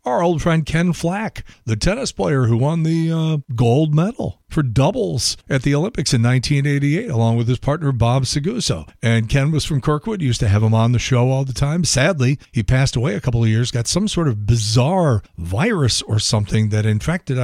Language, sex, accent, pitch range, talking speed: English, male, American, 125-175 Hz, 205 wpm